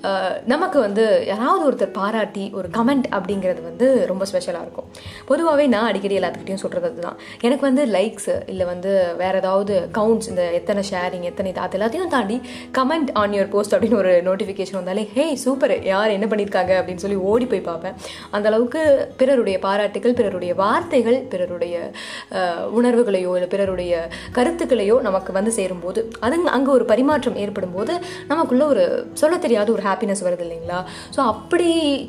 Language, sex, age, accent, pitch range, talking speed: Tamil, female, 20-39, native, 185-255 Hz, 150 wpm